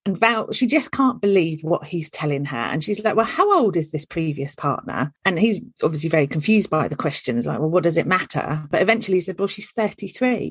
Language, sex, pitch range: English, female, 170-235 Hz